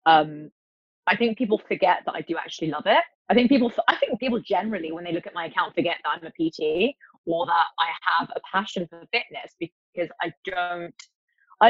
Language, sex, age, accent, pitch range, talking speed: English, female, 20-39, British, 170-225 Hz, 210 wpm